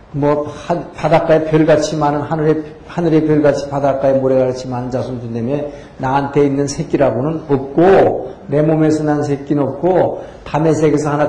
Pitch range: 130-155 Hz